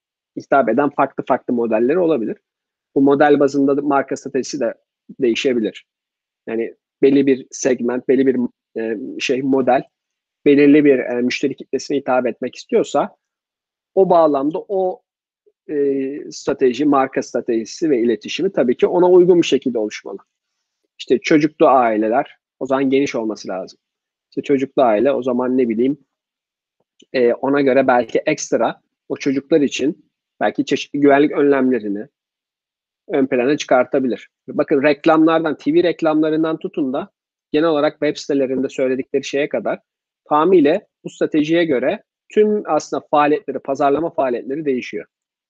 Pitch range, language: 130-160 Hz, Turkish